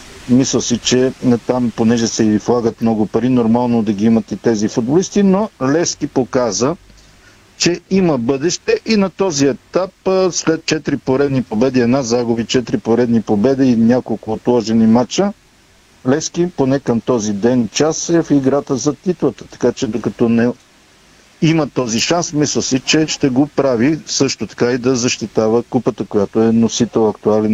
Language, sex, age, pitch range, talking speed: Bulgarian, male, 50-69, 115-155 Hz, 160 wpm